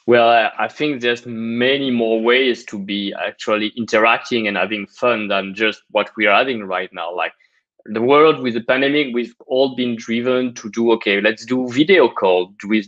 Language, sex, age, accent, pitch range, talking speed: Italian, male, 20-39, French, 110-150 Hz, 185 wpm